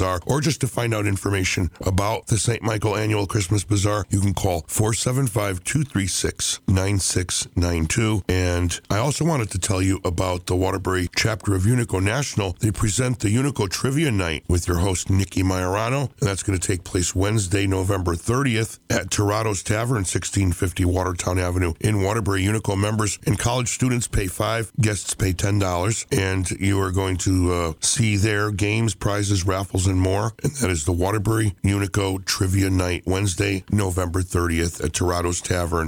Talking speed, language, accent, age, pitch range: 165 wpm, English, American, 50-69, 90-110 Hz